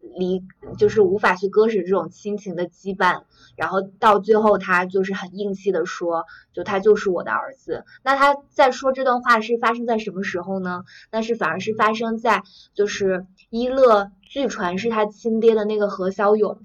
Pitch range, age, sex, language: 185-220 Hz, 20-39, female, Chinese